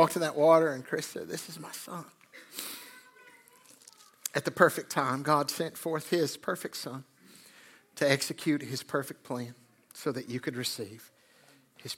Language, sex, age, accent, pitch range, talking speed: English, male, 60-79, American, 140-170 Hz, 165 wpm